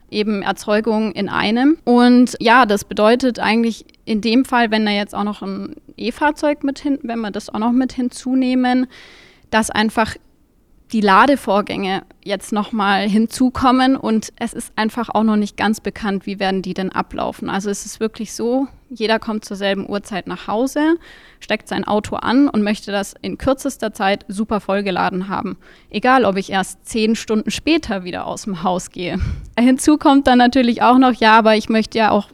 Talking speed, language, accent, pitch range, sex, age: 180 wpm, German, German, 205-245 Hz, female, 20-39